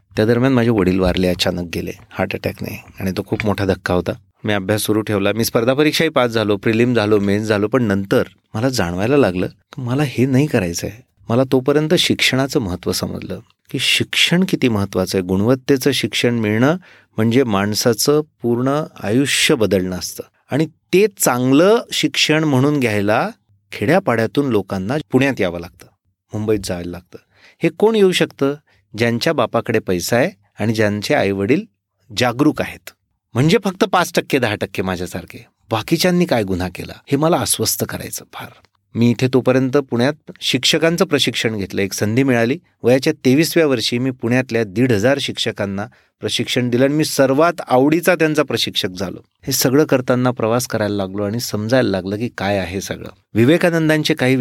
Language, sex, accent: Marathi, male, native